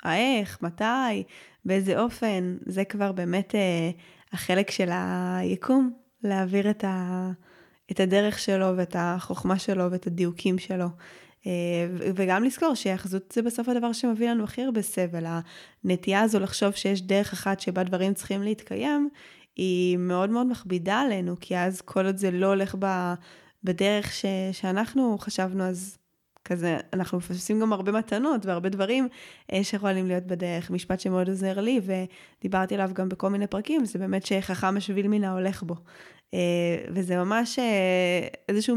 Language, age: Hebrew, 10-29